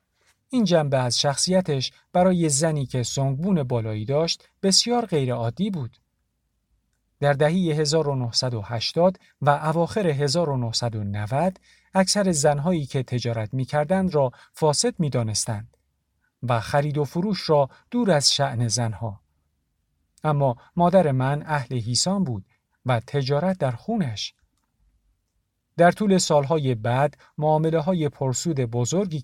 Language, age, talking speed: Persian, 50-69, 110 wpm